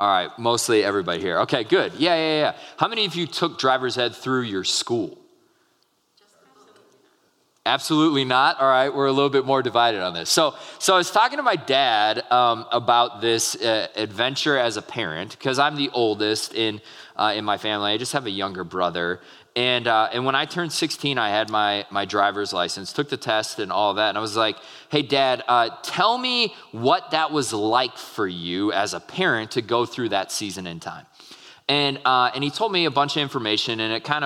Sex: male